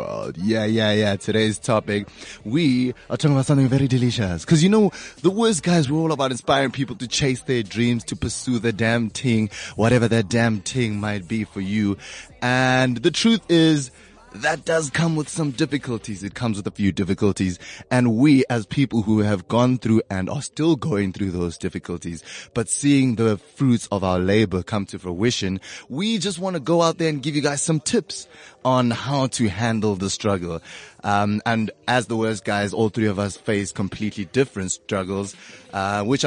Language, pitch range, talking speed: English, 100-130 Hz, 190 wpm